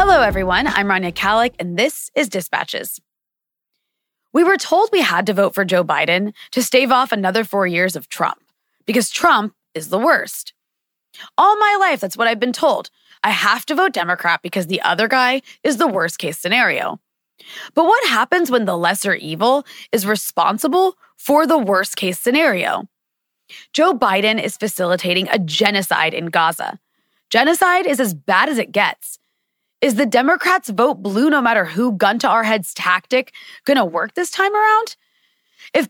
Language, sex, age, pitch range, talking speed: English, female, 20-39, 195-290 Hz, 170 wpm